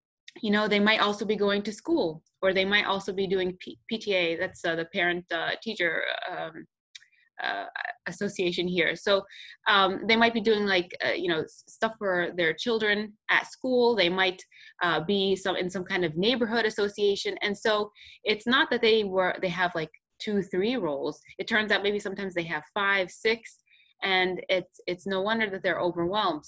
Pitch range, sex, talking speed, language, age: 175-210 Hz, female, 190 wpm, English, 20-39